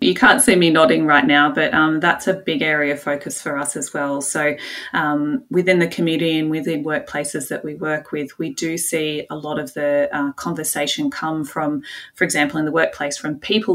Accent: Australian